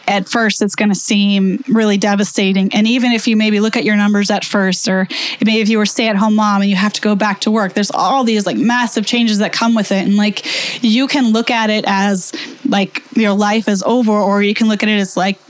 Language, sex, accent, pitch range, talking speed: English, female, American, 210-250 Hz, 255 wpm